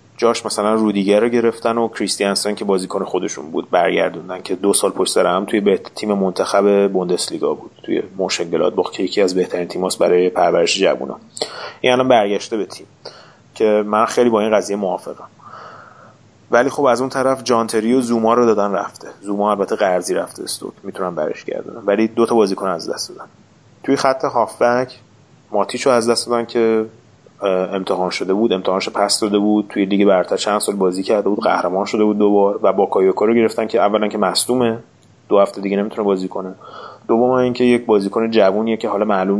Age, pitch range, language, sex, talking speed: 30-49, 100-115 Hz, Persian, male, 185 wpm